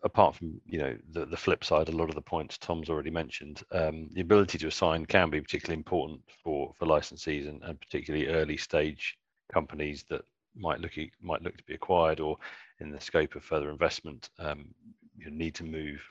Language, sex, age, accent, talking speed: English, male, 40-59, British, 200 wpm